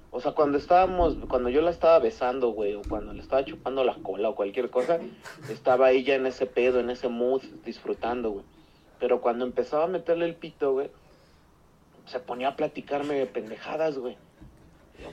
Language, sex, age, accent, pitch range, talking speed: Spanish, male, 40-59, Mexican, 125-165 Hz, 185 wpm